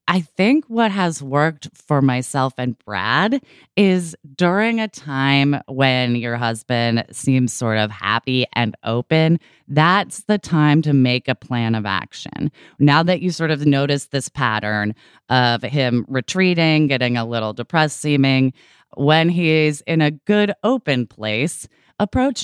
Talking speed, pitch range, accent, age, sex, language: 145 wpm, 130-180 Hz, American, 20-39, female, English